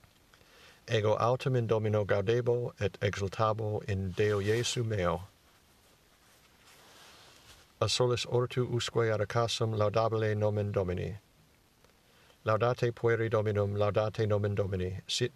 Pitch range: 100-115 Hz